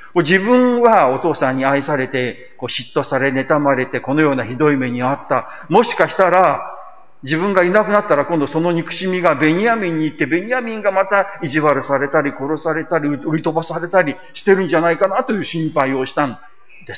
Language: Japanese